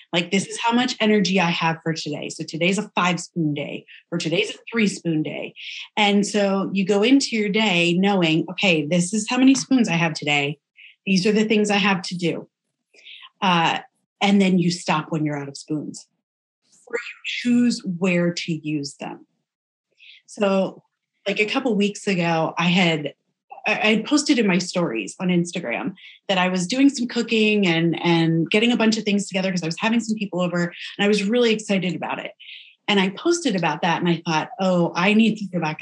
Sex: female